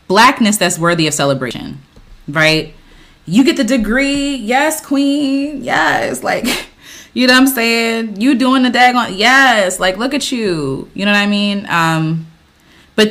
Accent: American